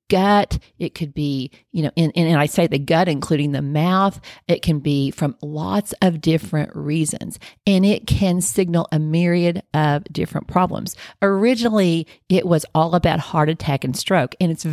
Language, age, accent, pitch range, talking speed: English, 40-59, American, 150-190 Hz, 170 wpm